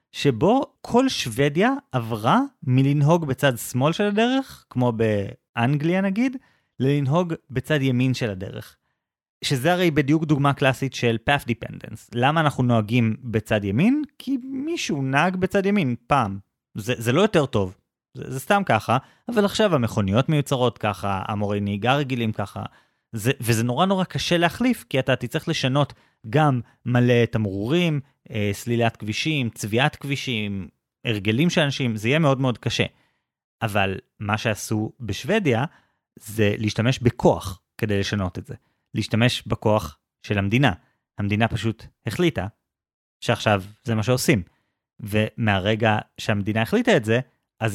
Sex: male